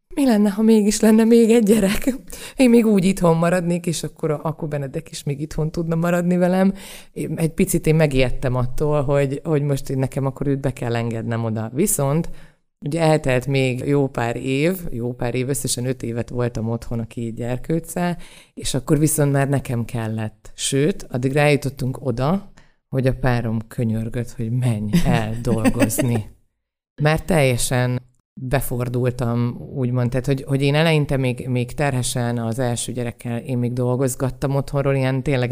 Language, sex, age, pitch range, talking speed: Hungarian, female, 30-49, 120-150 Hz, 165 wpm